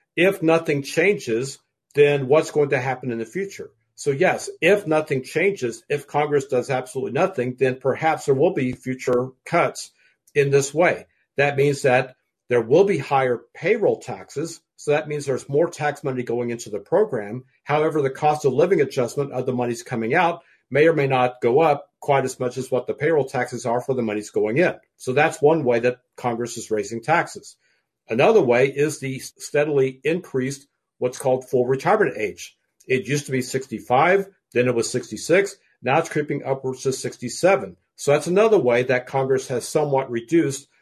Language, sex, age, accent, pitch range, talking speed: English, male, 50-69, American, 125-150 Hz, 185 wpm